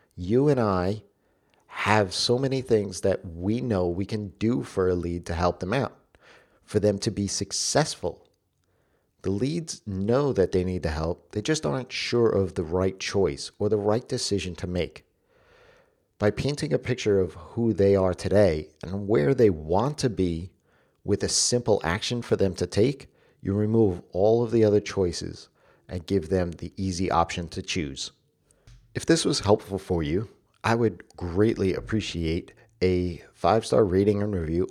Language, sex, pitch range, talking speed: English, male, 90-115 Hz, 175 wpm